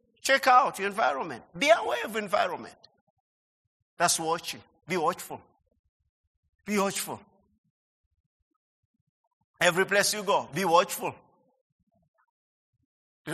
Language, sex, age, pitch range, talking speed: English, male, 50-69, 165-220 Hz, 95 wpm